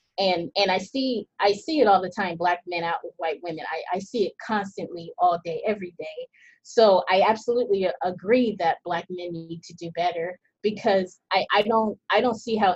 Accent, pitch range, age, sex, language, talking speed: American, 170-200 Hz, 20-39, female, English, 210 wpm